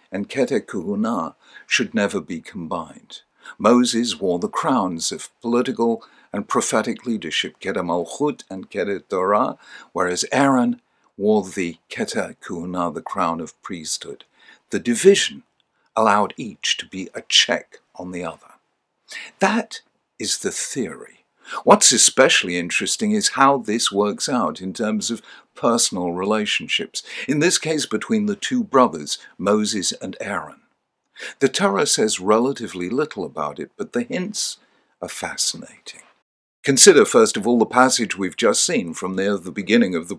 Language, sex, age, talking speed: English, male, 60-79, 145 wpm